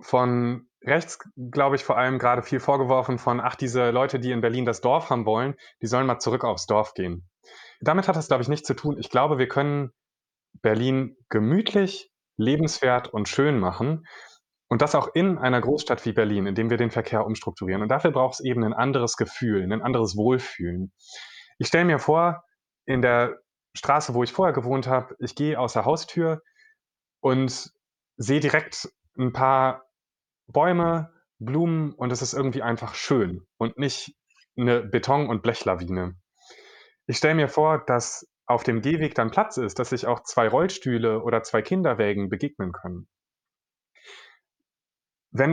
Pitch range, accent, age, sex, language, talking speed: 115-145 Hz, German, 30-49, male, German, 165 wpm